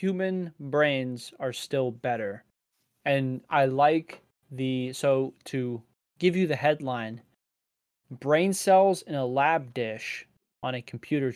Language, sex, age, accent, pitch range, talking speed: English, male, 20-39, American, 125-145 Hz, 125 wpm